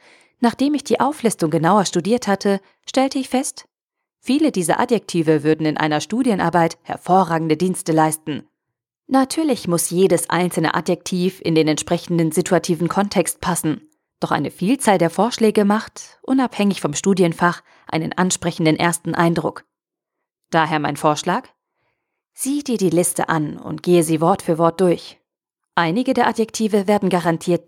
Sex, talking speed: female, 140 wpm